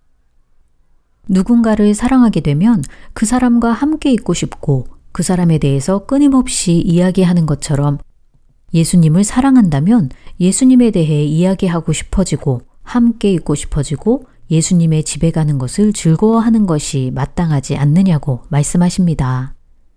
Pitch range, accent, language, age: 145-205 Hz, native, Korean, 40-59